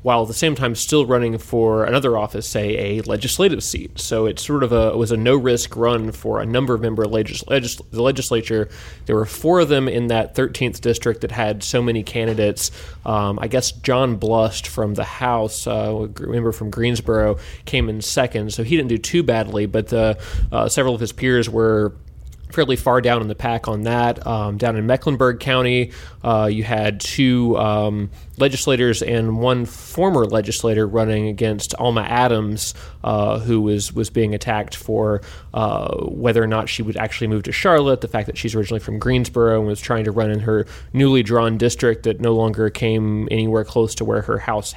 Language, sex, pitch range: English, male, 105-120 Hz